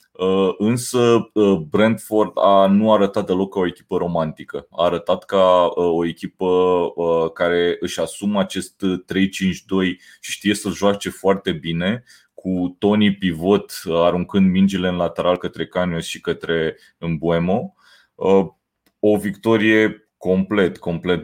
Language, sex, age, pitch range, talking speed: Romanian, male, 20-39, 85-100 Hz, 120 wpm